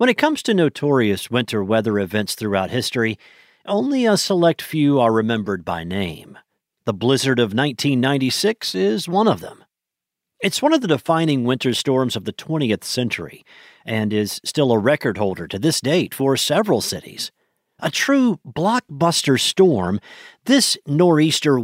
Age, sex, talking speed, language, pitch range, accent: 50-69, male, 155 wpm, English, 125-190 Hz, American